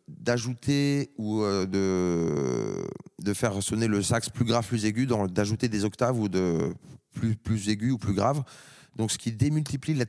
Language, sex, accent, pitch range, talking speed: French, male, French, 100-125 Hz, 170 wpm